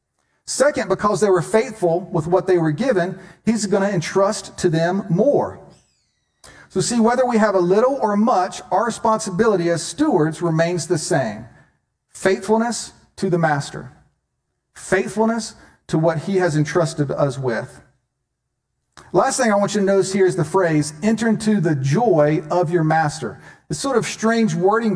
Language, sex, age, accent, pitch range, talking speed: English, male, 50-69, American, 165-215 Hz, 165 wpm